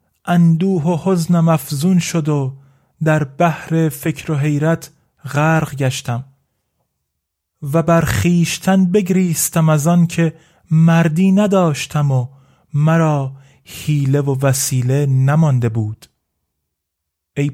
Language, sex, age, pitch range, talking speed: Persian, male, 30-49, 135-165 Hz, 105 wpm